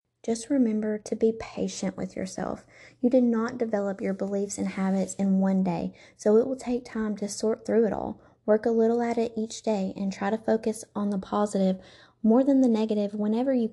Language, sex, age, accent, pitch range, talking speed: English, female, 20-39, American, 200-230 Hz, 210 wpm